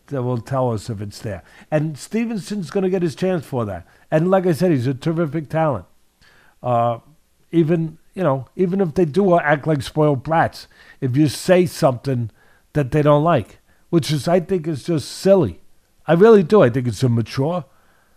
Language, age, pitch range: English, 50-69, 115-160 Hz